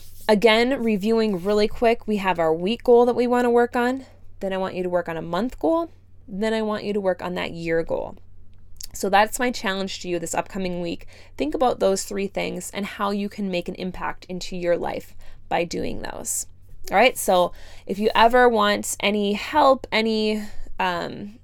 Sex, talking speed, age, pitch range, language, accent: female, 205 wpm, 20-39, 180-220 Hz, English, American